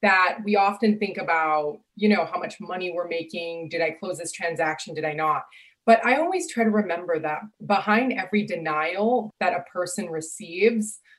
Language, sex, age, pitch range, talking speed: English, female, 20-39, 180-225 Hz, 180 wpm